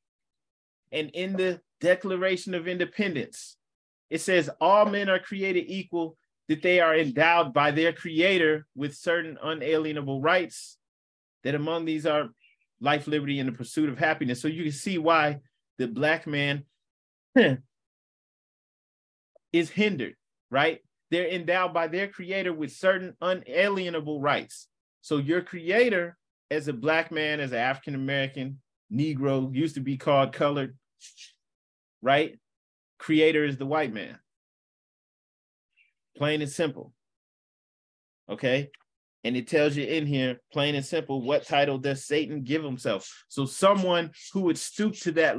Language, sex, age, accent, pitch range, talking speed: English, male, 30-49, American, 135-170 Hz, 135 wpm